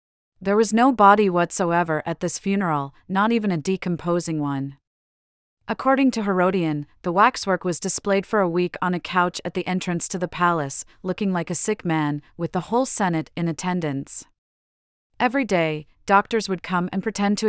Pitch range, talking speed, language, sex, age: 160-200 Hz, 175 wpm, English, female, 40-59